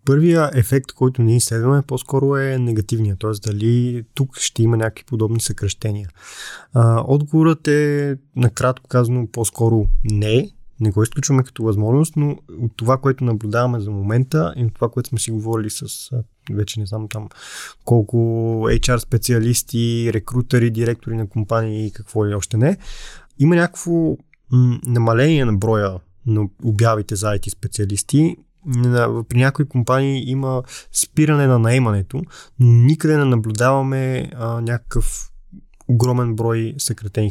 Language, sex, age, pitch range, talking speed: English, male, 20-39, 110-135 Hz, 130 wpm